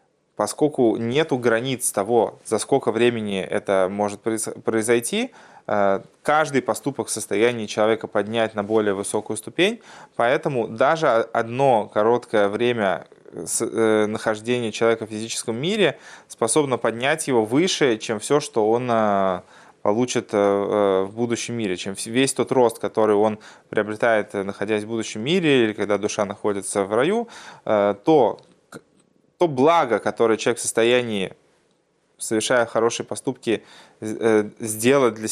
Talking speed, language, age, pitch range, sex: 120 wpm, Russian, 20-39, 105-120 Hz, male